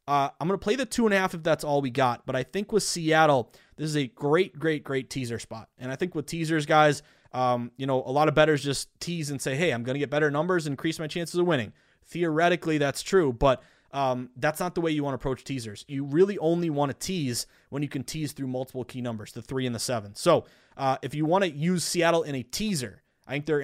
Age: 20-39